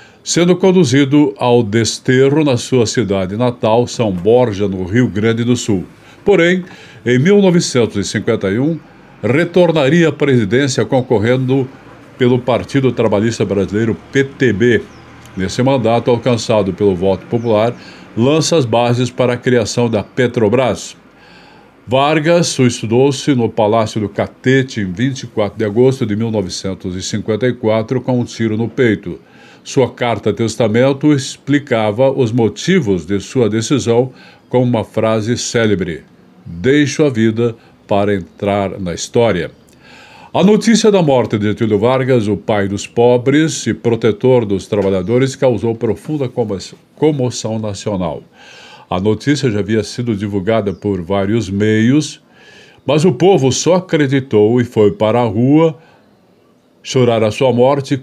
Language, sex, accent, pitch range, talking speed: Portuguese, male, Brazilian, 105-135 Hz, 125 wpm